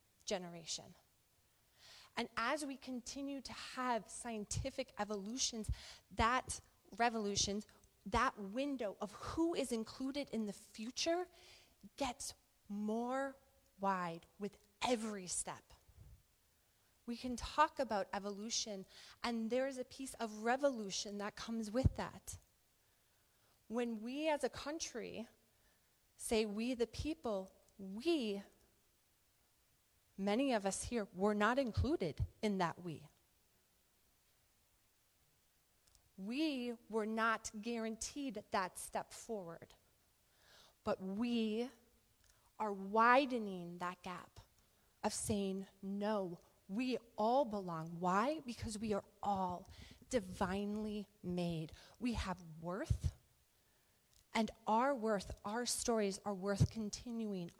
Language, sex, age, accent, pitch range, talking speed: English, female, 20-39, American, 195-240 Hz, 105 wpm